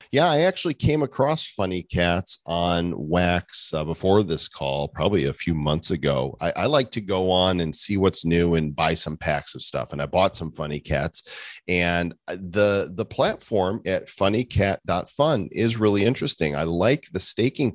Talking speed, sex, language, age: 180 wpm, male, English, 40-59